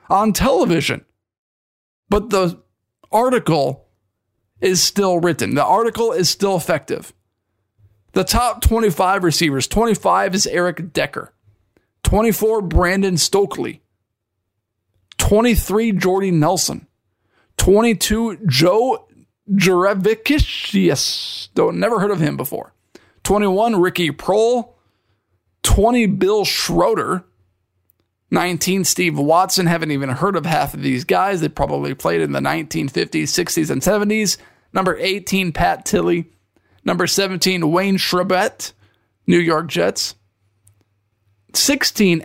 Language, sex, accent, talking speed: English, male, American, 105 wpm